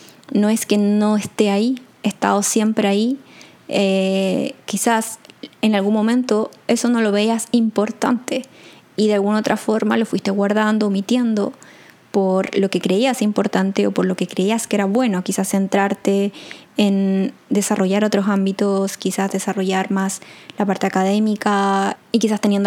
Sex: female